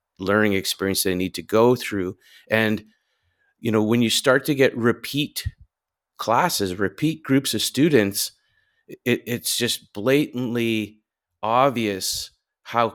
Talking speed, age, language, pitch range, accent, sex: 120 wpm, 30-49, English, 100-120 Hz, American, male